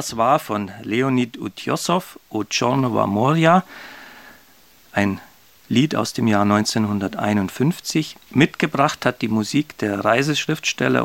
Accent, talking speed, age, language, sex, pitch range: German, 110 wpm, 40-59, German, male, 110-130 Hz